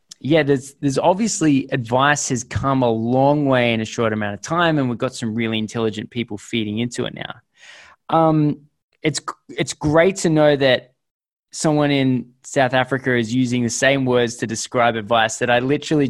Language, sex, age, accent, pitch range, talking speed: English, male, 20-39, Australian, 115-145 Hz, 185 wpm